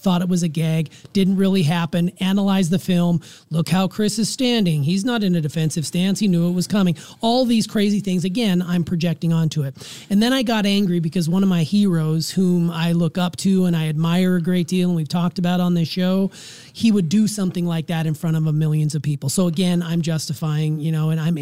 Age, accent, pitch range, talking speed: 30-49, American, 160-195 Hz, 235 wpm